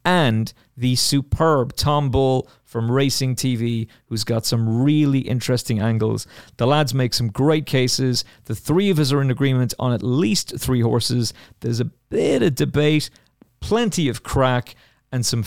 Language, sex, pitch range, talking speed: English, male, 115-145 Hz, 165 wpm